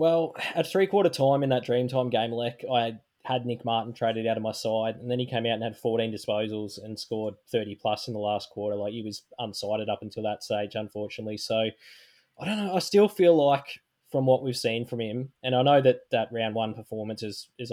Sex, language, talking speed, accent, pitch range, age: male, English, 225 wpm, Australian, 110-125 Hz, 20-39